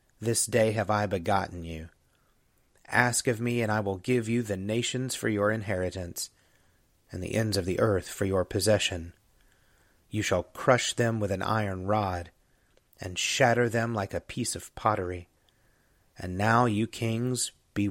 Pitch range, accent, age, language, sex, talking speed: 95-120 Hz, American, 30-49, English, male, 165 wpm